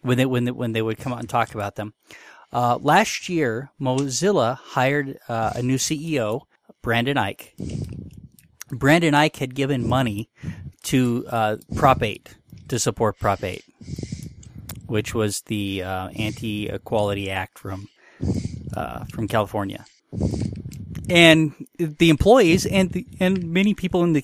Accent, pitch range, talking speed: American, 110-140 Hz, 145 wpm